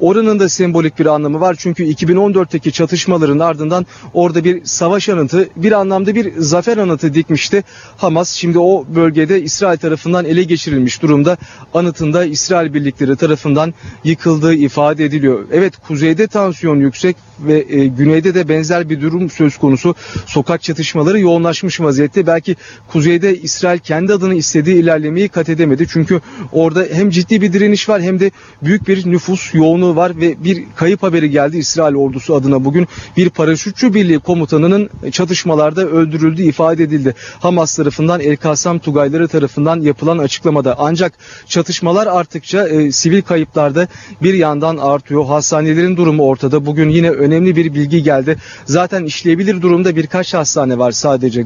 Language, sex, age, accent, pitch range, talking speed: Turkish, male, 40-59, native, 150-180 Hz, 145 wpm